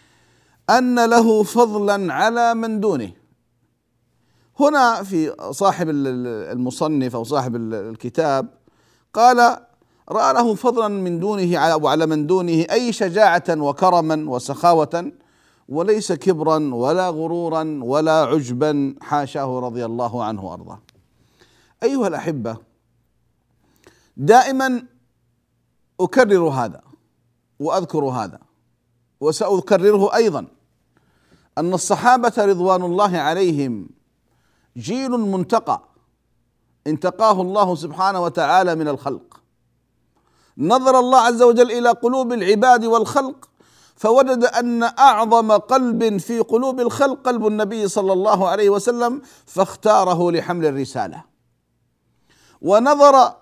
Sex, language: male, Arabic